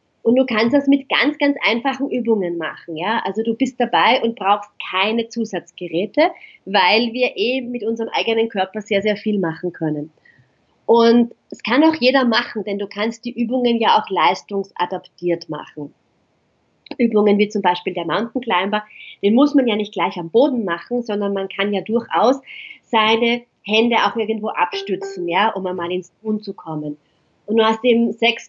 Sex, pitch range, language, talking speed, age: female, 200-245 Hz, German, 175 wpm, 30-49